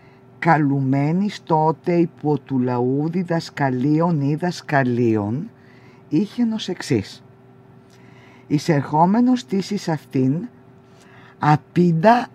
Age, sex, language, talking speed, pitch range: 50-69, female, Greek, 75 wpm, 130-175 Hz